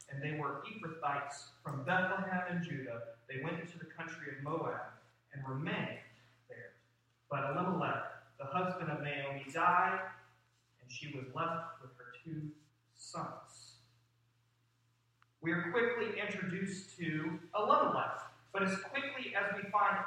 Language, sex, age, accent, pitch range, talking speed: English, male, 30-49, American, 125-190 Hz, 135 wpm